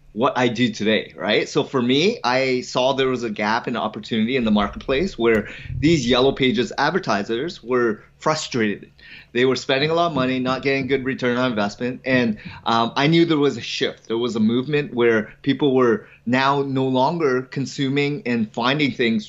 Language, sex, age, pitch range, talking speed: English, male, 30-49, 115-135 Hz, 190 wpm